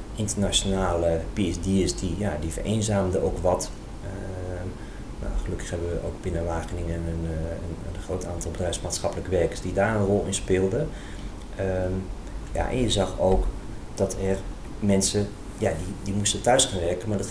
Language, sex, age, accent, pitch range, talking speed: Dutch, male, 30-49, Dutch, 90-105 Hz, 145 wpm